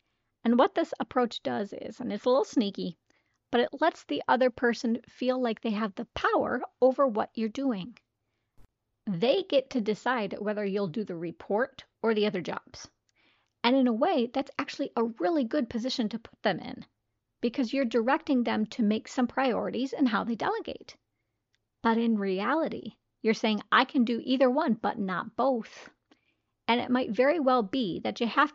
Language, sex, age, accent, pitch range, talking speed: English, female, 40-59, American, 215-265 Hz, 185 wpm